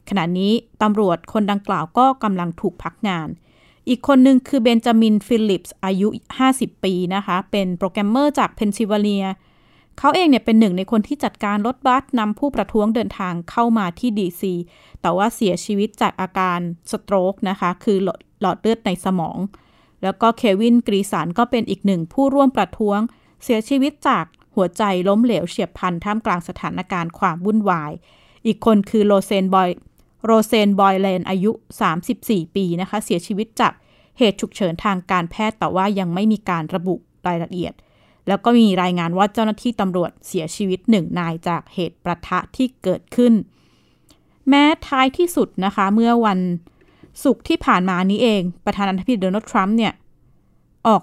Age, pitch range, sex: 20-39, 185-230 Hz, female